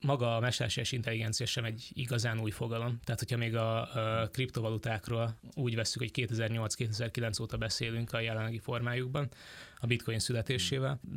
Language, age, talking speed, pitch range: Hungarian, 20-39, 145 wpm, 110-125 Hz